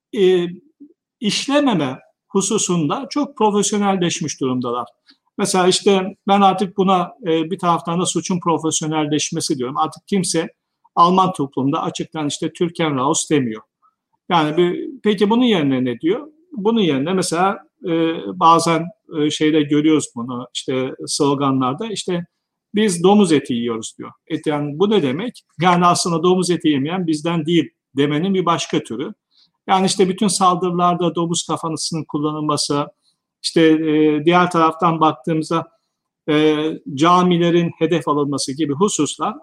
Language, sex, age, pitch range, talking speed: Turkish, male, 50-69, 155-195 Hz, 130 wpm